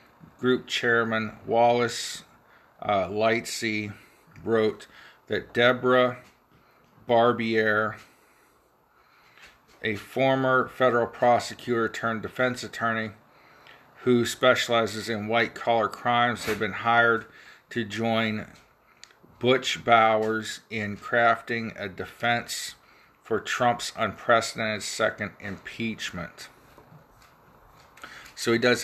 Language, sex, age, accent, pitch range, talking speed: English, male, 40-59, American, 105-120 Hz, 85 wpm